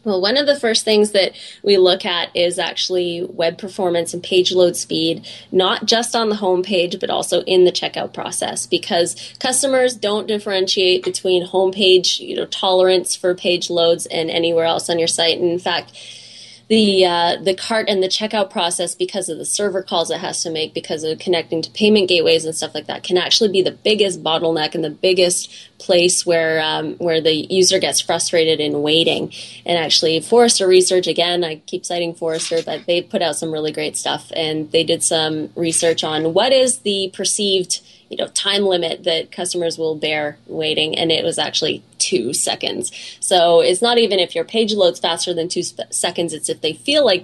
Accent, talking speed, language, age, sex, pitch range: American, 200 wpm, English, 20-39, female, 165-190 Hz